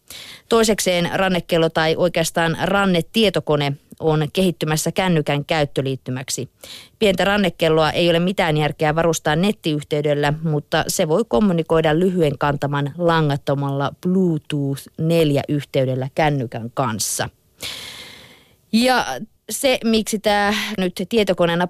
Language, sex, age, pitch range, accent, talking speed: Finnish, female, 30-49, 145-185 Hz, native, 95 wpm